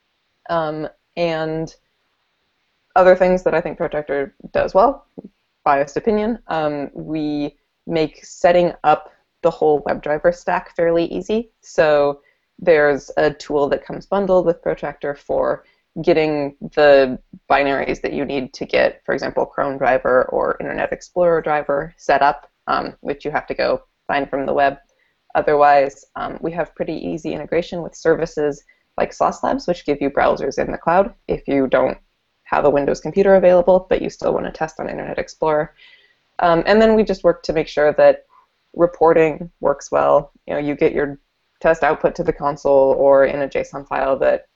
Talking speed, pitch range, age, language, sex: 170 wpm, 140-175 Hz, 20-39, English, female